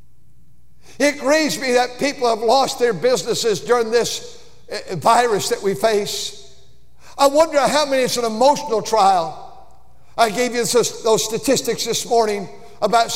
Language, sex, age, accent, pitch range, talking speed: English, male, 60-79, American, 215-255 Hz, 140 wpm